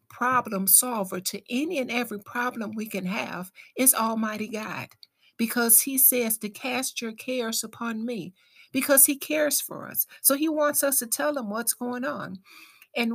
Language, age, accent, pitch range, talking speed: English, 60-79, American, 195-260 Hz, 175 wpm